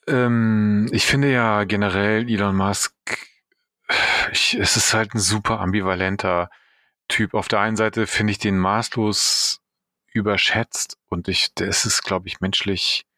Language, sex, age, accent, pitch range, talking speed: German, male, 30-49, German, 90-110 Hz, 145 wpm